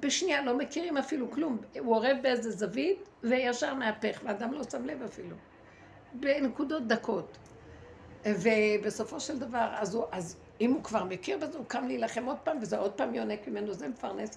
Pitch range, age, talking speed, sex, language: 220-345 Hz, 60-79, 170 wpm, female, Hebrew